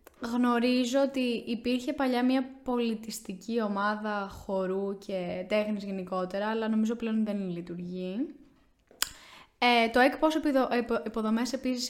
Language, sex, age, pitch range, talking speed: Greek, female, 10-29, 195-255 Hz, 100 wpm